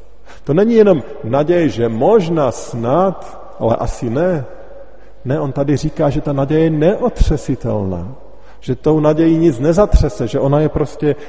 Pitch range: 120-165 Hz